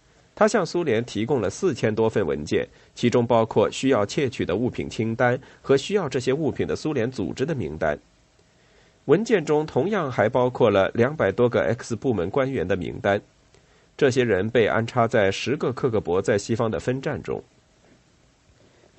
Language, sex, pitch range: Chinese, male, 110-135 Hz